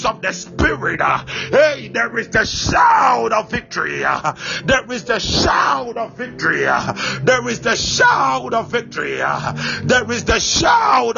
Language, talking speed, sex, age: English, 160 wpm, male, 50-69